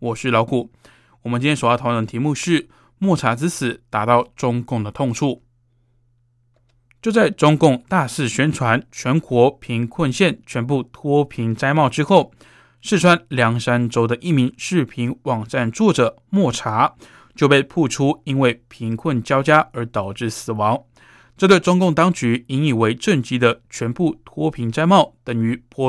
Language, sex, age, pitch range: Chinese, male, 20-39, 120-150 Hz